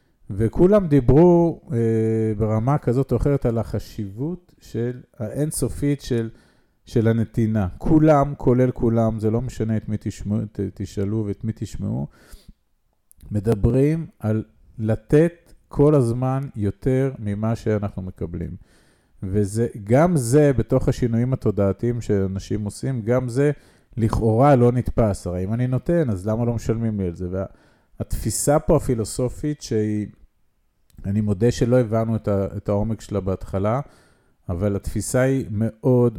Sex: male